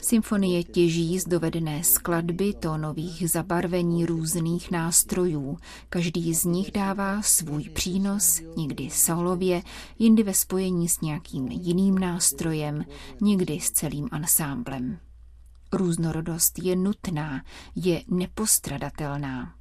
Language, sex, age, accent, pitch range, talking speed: Czech, female, 30-49, native, 160-195 Hz, 100 wpm